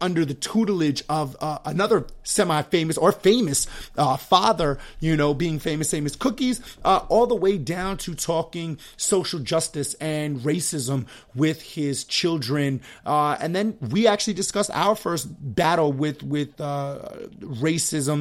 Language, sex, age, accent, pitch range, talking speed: English, male, 30-49, American, 150-180 Hz, 145 wpm